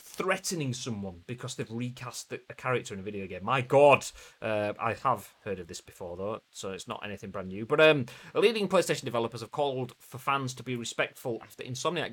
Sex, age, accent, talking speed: male, 30-49, British, 205 wpm